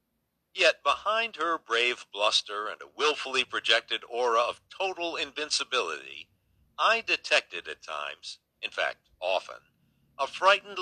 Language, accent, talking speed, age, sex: English, American, 120 wpm, 60-79, male